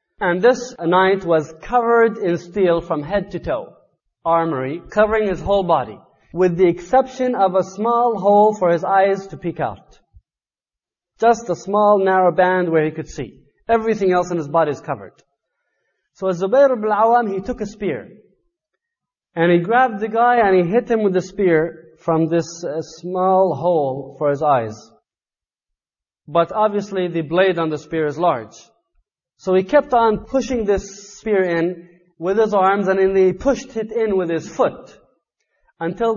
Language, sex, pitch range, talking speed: English, male, 165-215 Hz, 170 wpm